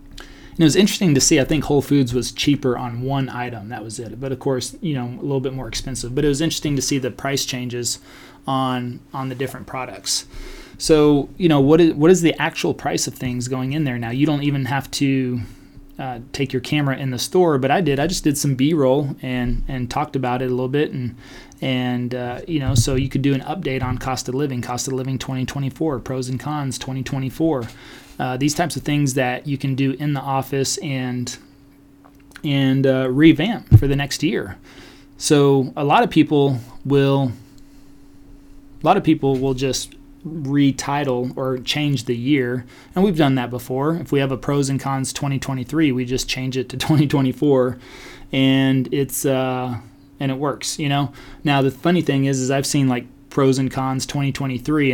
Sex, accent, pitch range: male, American, 130-145 Hz